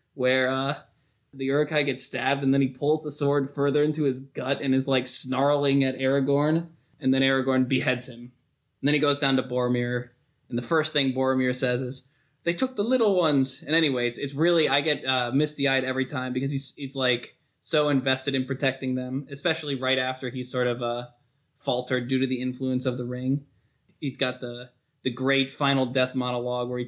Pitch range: 125-140 Hz